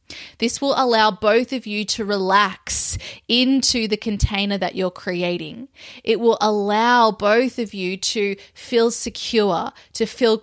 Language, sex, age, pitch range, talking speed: English, female, 20-39, 210-245 Hz, 145 wpm